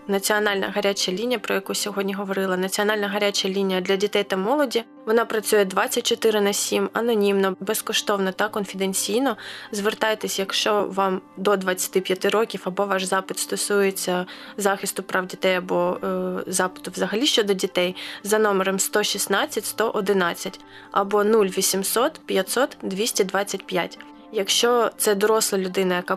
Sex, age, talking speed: female, 20-39, 125 wpm